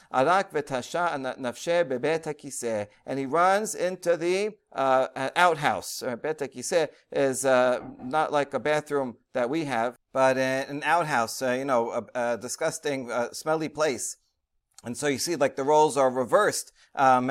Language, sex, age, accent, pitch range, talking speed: English, male, 40-59, American, 130-175 Hz, 135 wpm